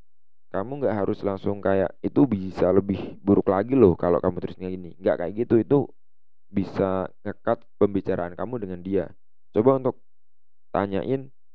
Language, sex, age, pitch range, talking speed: Indonesian, male, 20-39, 90-110 Hz, 145 wpm